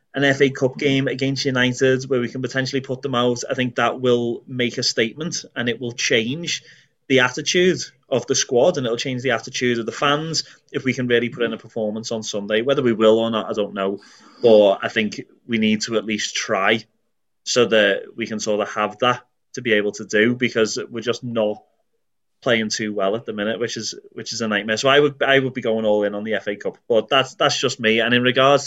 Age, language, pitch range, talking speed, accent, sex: 20-39, English, 110-135 Hz, 240 wpm, British, male